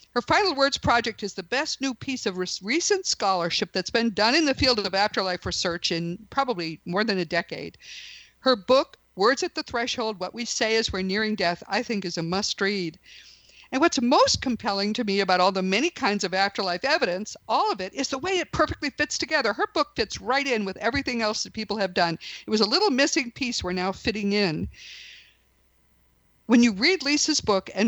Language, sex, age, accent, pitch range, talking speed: English, female, 50-69, American, 195-275 Hz, 210 wpm